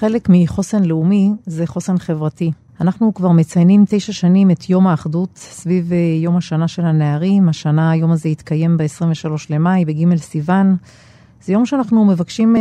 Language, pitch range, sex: Hebrew, 165-190 Hz, female